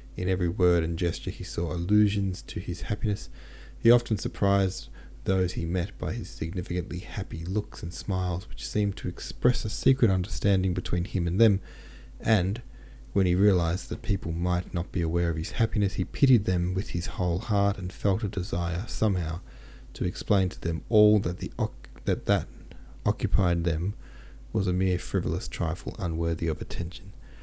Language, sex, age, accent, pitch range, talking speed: English, male, 30-49, Australian, 85-105 Hz, 175 wpm